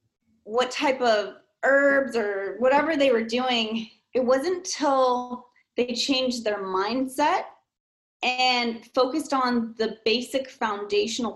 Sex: female